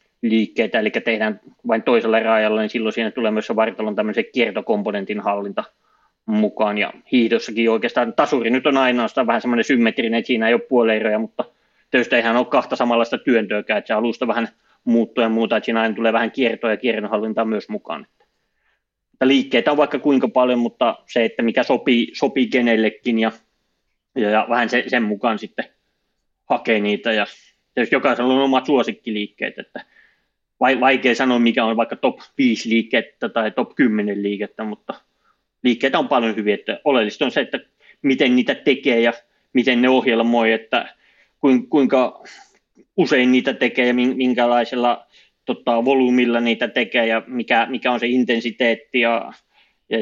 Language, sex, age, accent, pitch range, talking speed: Finnish, male, 20-39, native, 110-125 Hz, 160 wpm